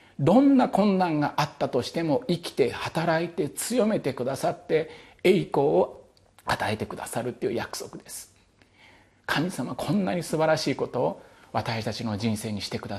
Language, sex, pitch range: Japanese, male, 120-170 Hz